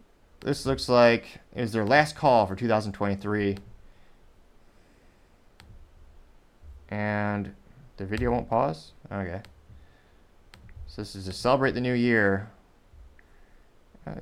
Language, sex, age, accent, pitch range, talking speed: English, male, 20-39, American, 95-130 Hz, 100 wpm